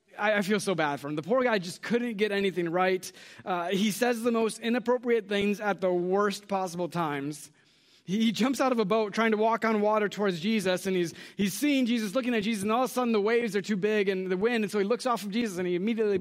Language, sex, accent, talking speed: English, male, American, 265 wpm